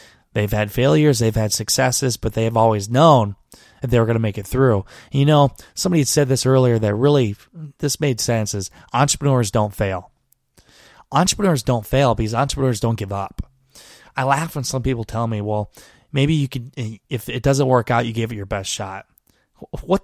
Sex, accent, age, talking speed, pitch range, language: male, American, 20-39, 200 wpm, 110-140 Hz, English